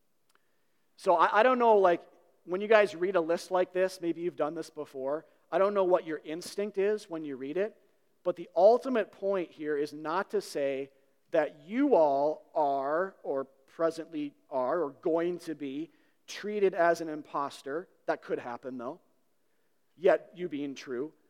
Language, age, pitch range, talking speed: English, 40-59, 150-200 Hz, 170 wpm